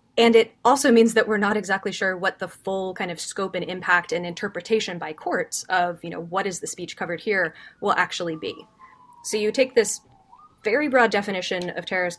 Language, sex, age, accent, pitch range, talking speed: English, female, 20-39, American, 180-220 Hz, 205 wpm